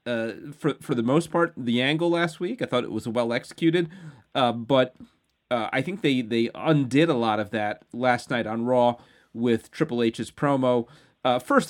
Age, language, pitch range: 30-49, English, 115-140 Hz